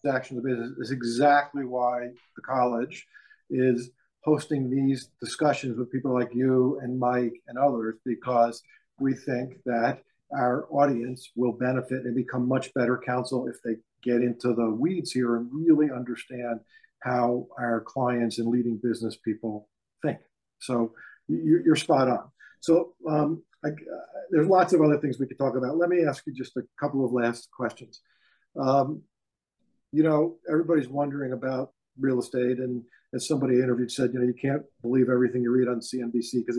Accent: American